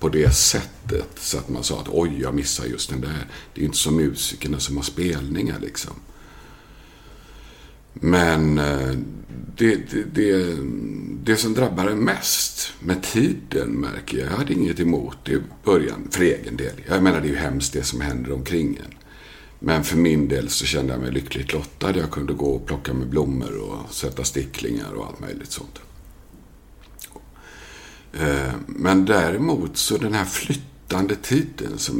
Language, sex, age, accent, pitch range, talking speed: Swedish, male, 50-69, native, 70-95 Hz, 160 wpm